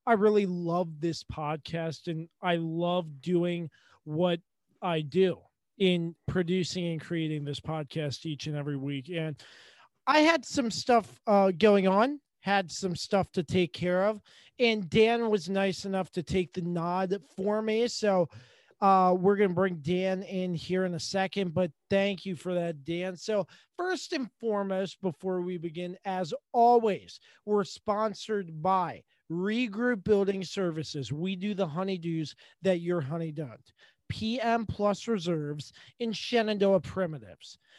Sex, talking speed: male, 150 wpm